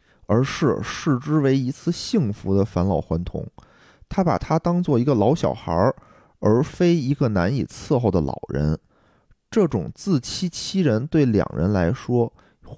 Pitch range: 110-180 Hz